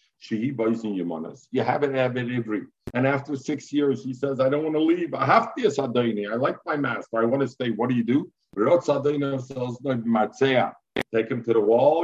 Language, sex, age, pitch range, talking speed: English, male, 50-69, 115-145 Hz, 220 wpm